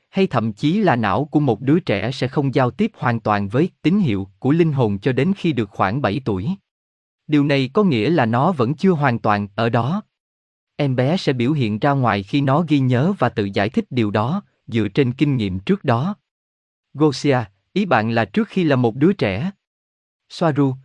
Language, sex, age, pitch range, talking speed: Vietnamese, male, 20-39, 115-155 Hz, 215 wpm